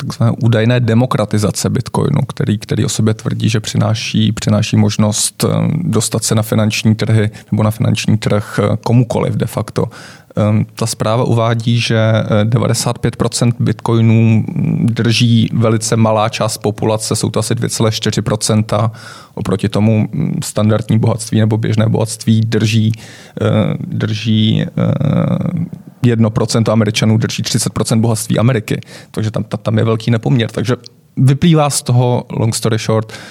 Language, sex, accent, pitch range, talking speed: Czech, male, native, 110-125 Hz, 120 wpm